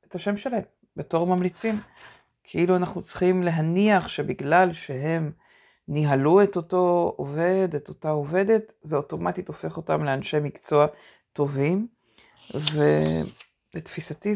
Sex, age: female, 50-69